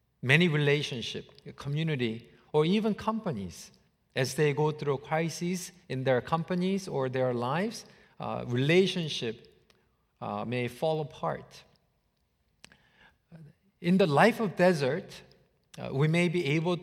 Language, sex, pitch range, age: English, male, 145-190 Hz, 50-69